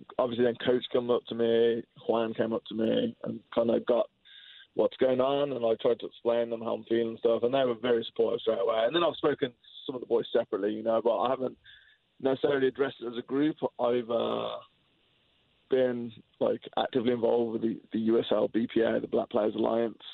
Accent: British